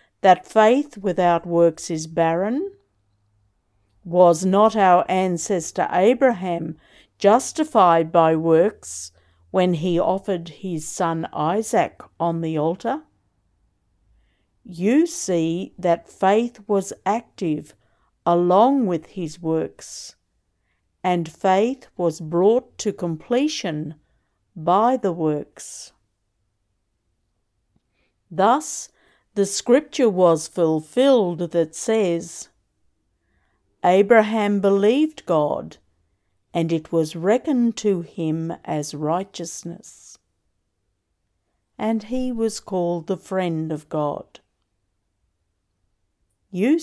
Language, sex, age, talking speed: English, female, 50-69, 90 wpm